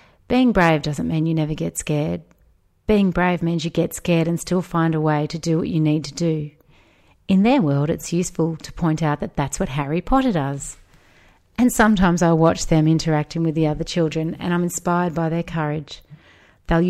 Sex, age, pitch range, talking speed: female, 30-49, 155-175 Hz, 200 wpm